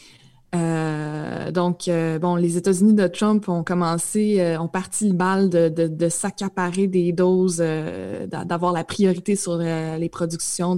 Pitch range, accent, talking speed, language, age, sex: 170-200 Hz, Canadian, 160 wpm, French, 20-39, female